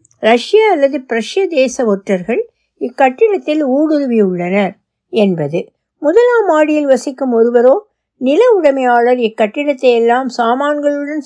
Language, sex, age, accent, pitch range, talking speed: Tamil, female, 60-79, native, 210-310 Hz, 95 wpm